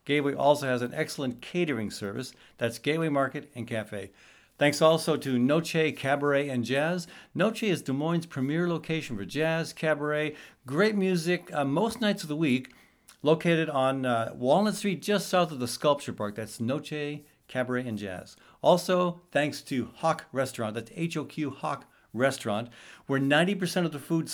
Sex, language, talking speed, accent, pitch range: male, English, 165 wpm, American, 130-175 Hz